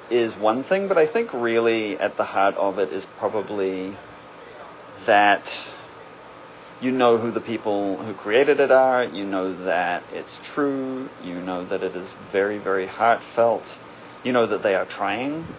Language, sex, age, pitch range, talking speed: English, male, 30-49, 100-135 Hz, 165 wpm